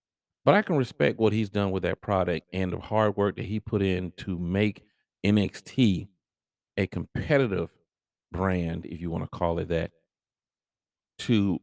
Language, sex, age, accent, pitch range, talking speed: English, male, 40-59, American, 95-120 Hz, 165 wpm